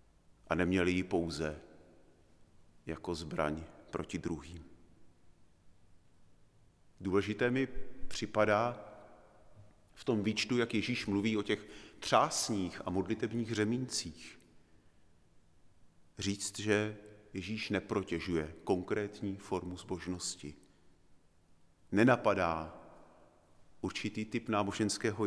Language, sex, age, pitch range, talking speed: Czech, male, 40-59, 85-115 Hz, 80 wpm